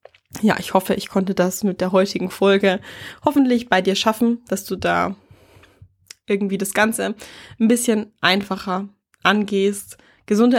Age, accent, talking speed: 20-39, German, 140 wpm